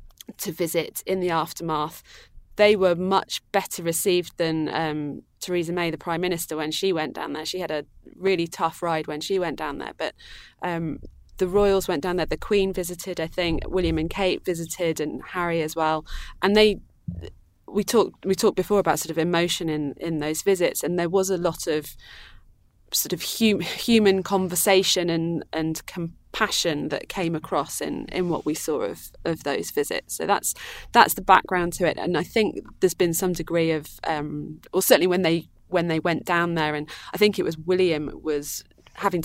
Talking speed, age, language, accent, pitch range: 195 wpm, 20-39, English, British, 160-185 Hz